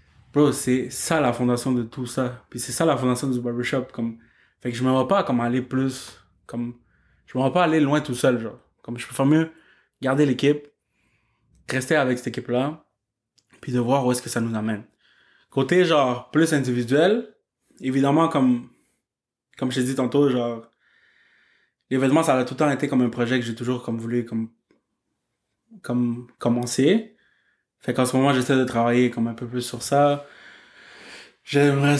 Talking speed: 185 wpm